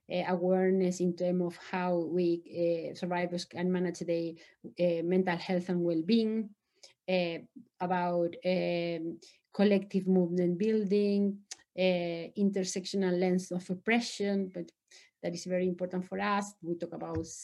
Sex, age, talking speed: female, 30-49, 135 wpm